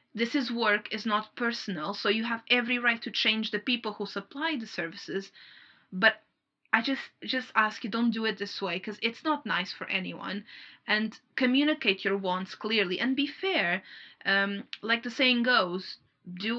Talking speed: 180 wpm